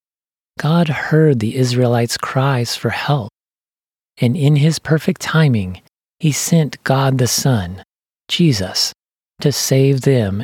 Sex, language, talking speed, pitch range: male, English, 120 wpm, 115-155 Hz